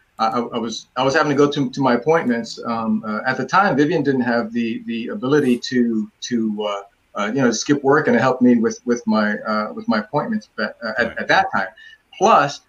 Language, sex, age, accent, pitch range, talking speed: English, male, 30-49, American, 120-150 Hz, 220 wpm